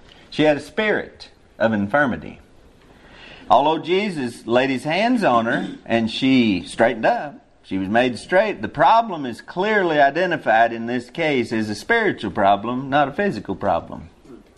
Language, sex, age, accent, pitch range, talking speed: English, male, 50-69, American, 110-155 Hz, 150 wpm